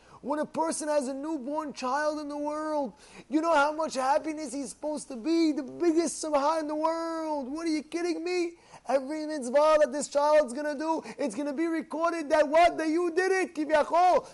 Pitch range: 280-325 Hz